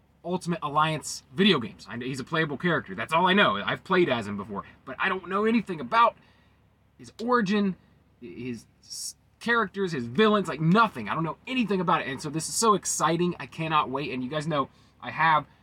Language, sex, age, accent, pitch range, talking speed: English, male, 20-39, American, 115-170 Hz, 205 wpm